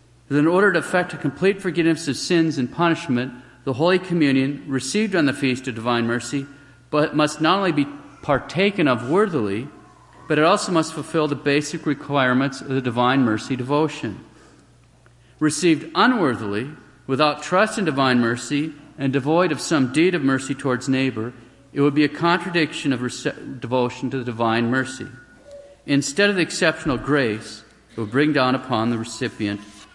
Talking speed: 165 wpm